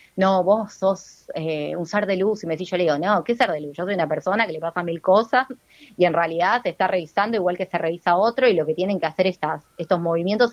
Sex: female